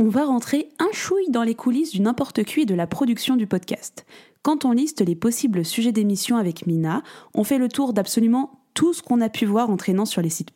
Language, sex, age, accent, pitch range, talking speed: French, female, 20-39, French, 195-260 Hz, 235 wpm